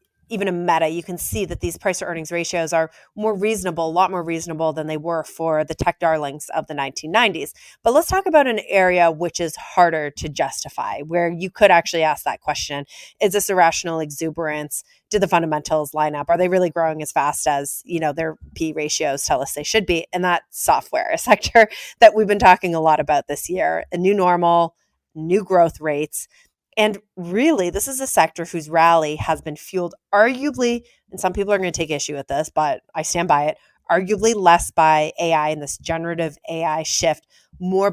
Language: English